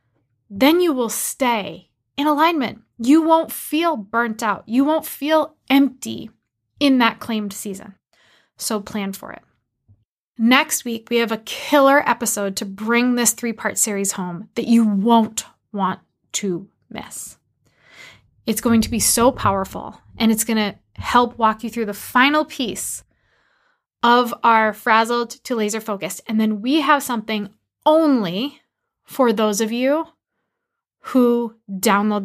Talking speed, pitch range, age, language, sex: 140 wpm, 215-255 Hz, 20-39, English, female